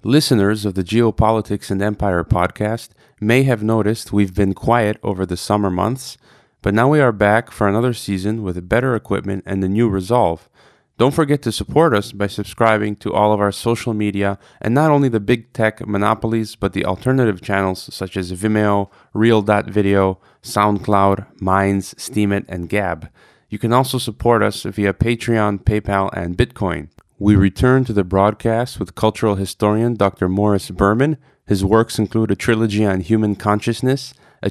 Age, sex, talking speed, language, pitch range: 20-39, male, 165 wpm, English, 100-115 Hz